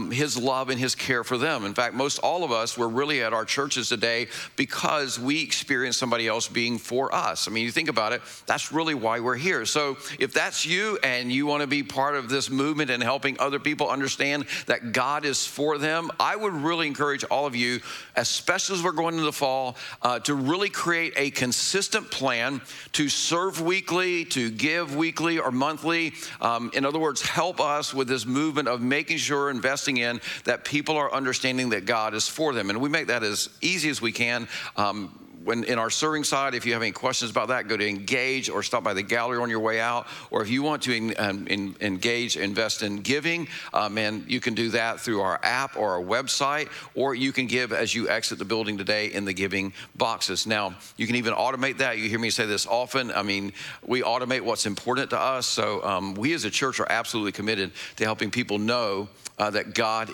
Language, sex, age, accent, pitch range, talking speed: English, male, 50-69, American, 115-145 Hz, 220 wpm